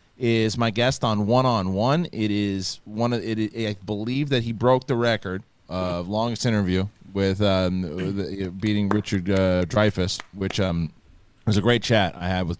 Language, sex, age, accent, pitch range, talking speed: English, male, 30-49, American, 90-115 Hz, 175 wpm